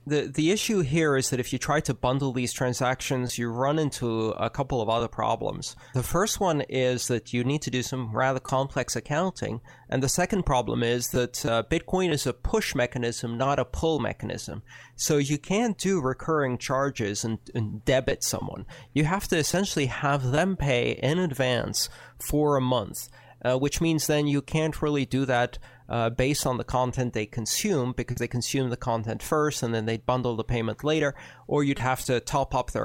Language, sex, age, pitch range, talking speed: English, male, 30-49, 120-145 Hz, 195 wpm